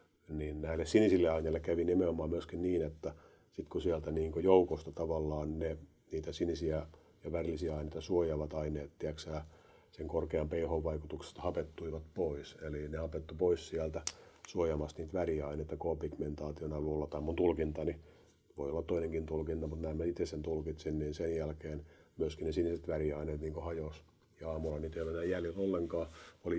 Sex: male